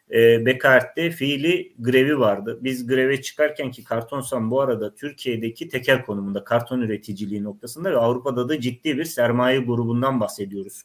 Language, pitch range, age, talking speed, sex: Turkish, 115-155 Hz, 30-49, 140 wpm, male